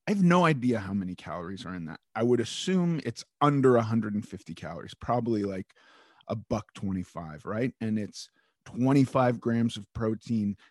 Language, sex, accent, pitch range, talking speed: English, male, American, 105-135 Hz, 165 wpm